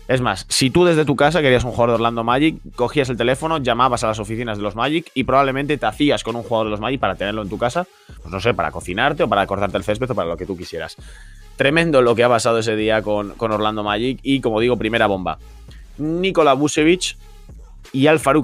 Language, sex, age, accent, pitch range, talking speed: Spanish, male, 20-39, Spanish, 105-140 Hz, 240 wpm